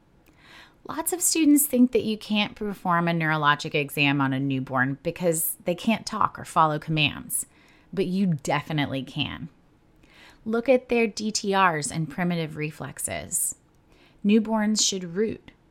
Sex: female